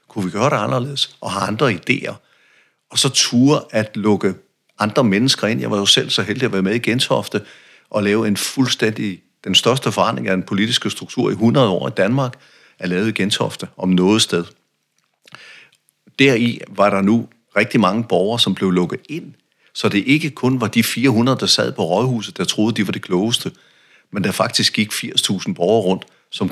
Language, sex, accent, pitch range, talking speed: Danish, male, native, 100-130 Hz, 195 wpm